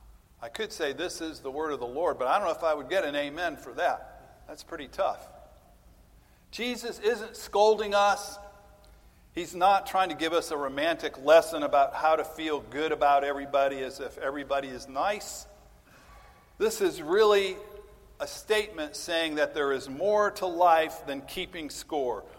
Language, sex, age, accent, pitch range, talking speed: English, male, 50-69, American, 140-205 Hz, 175 wpm